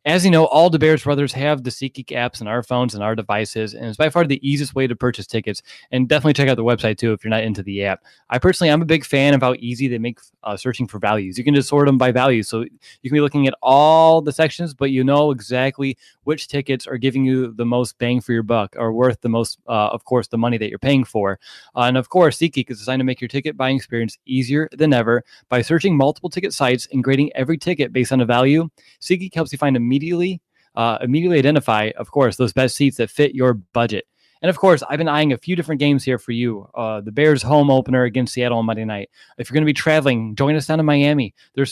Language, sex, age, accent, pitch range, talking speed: English, male, 20-39, American, 120-150 Hz, 260 wpm